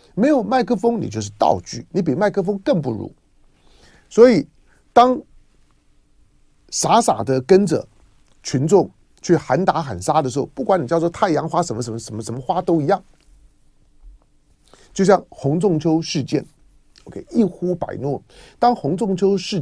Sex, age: male, 50-69